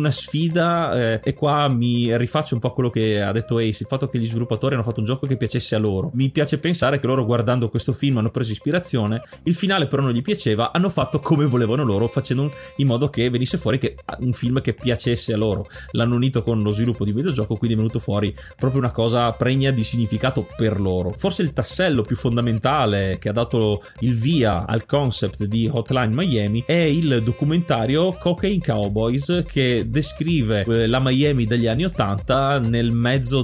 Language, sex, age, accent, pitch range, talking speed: Italian, male, 30-49, native, 110-135 Hz, 195 wpm